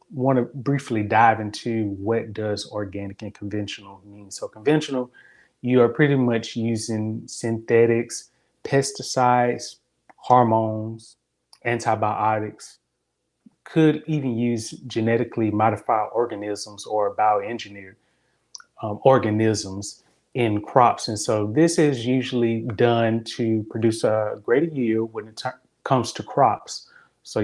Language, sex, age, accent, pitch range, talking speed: English, male, 30-49, American, 110-130 Hz, 110 wpm